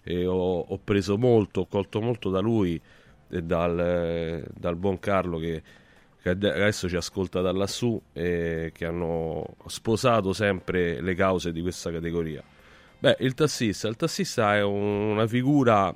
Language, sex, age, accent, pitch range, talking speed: Italian, male, 30-49, native, 90-115 Hz, 140 wpm